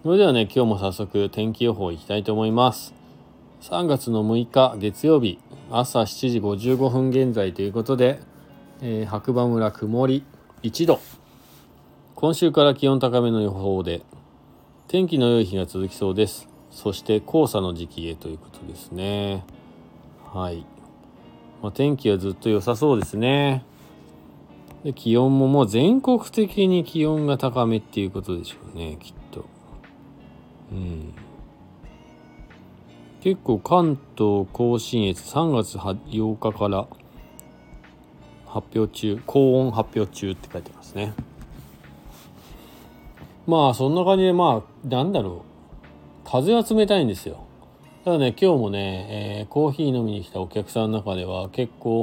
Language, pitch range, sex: Japanese, 95-135 Hz, male